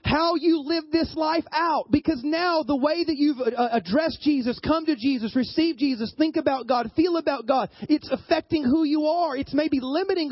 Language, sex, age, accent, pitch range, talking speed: English, male, 30-49, American, 215-305 Hz, 190 wpm